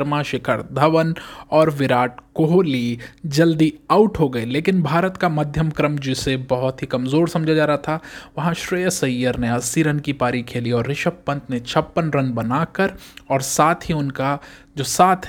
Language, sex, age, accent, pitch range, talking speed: Hindi, male, 20-39, native, 130-175 Hz, 175 wpm